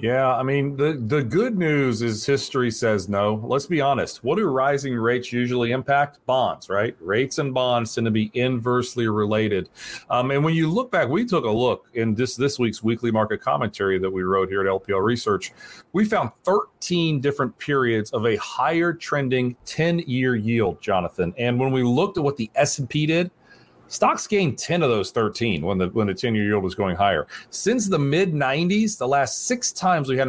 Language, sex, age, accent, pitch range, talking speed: English, male, 40-59, American, 115-150 Hz, 195 wpm